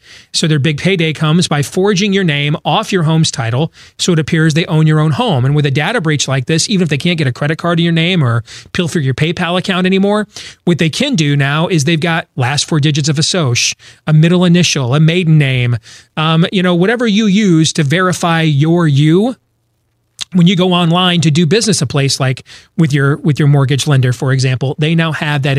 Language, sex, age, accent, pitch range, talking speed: English, male, 30-49, American, 145-180 Hz, 230 wpm